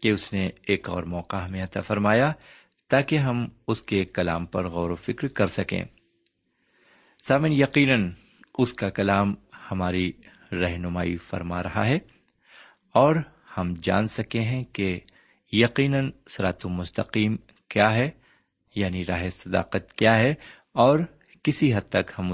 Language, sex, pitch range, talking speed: Urdu, male, 95-125 Hz, 135 wpm